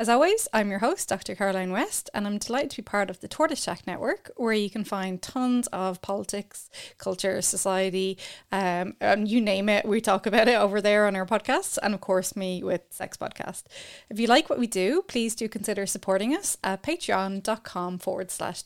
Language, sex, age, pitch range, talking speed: English, female, 20-39, 195-245 Hz, 205 wpm